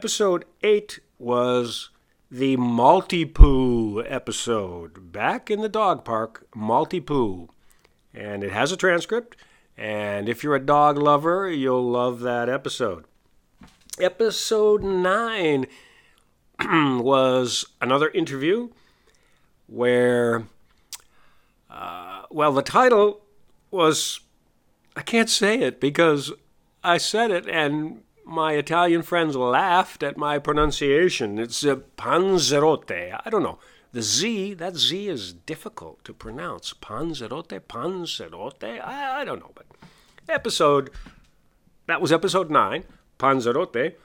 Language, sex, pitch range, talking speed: English, male, 120-180 Hz, 110 wpm